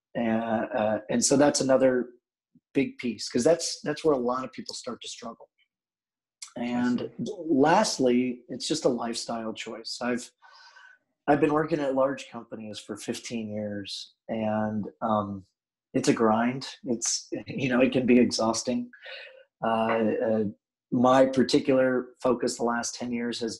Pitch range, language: 115-135 Hz, English